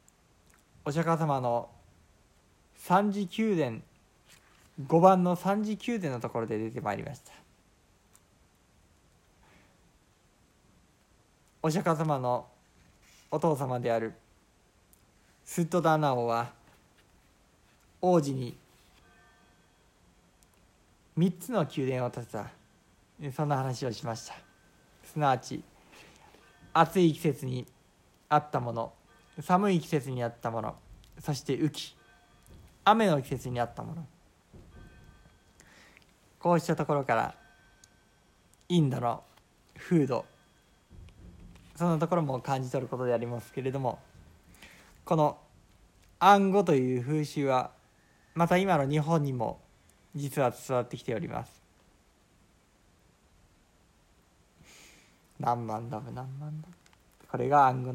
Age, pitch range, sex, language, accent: 50-69, 110-160 Hz, male, Japanese, native